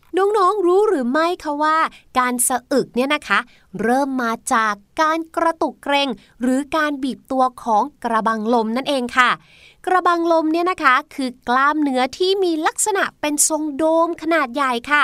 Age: 20-39